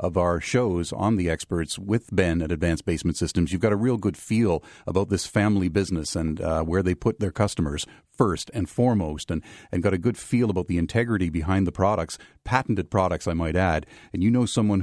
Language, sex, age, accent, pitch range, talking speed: English, male, 40-59, American, 85-115 Hz, 215 wpm